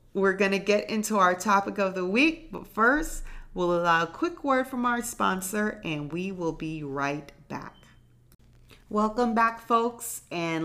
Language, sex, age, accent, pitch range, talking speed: English, female, 30-49, American, 155-220 Hz, 165 wpm